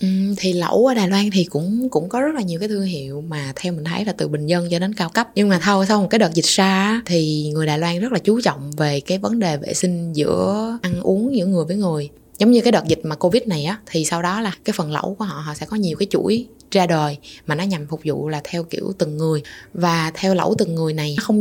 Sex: female